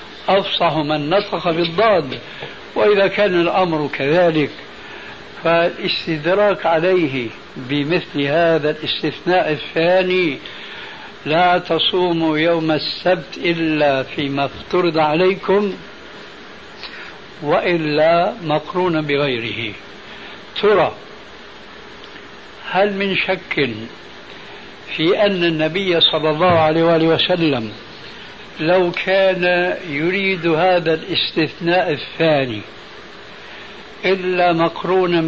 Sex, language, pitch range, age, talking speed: male, Arabic, 150-180 Hz, 70-89, 75 wpm